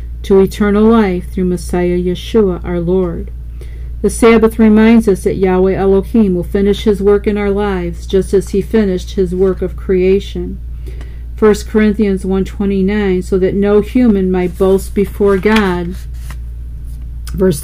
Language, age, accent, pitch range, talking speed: English, 50-69, American, 175-210 Hz, 145 wpm